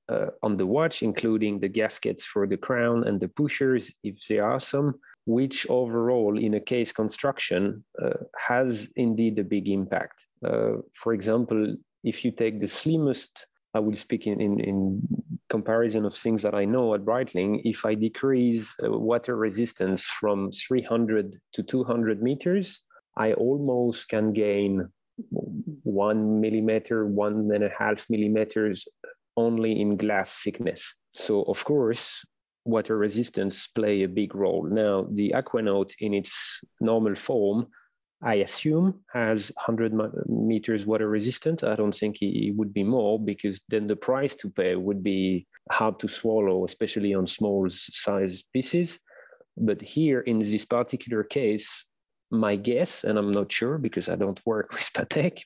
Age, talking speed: 30-49, 150 wpm